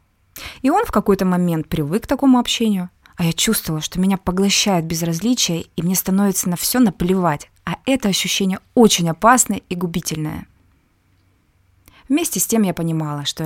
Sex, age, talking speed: female, 20-39, 155 wpm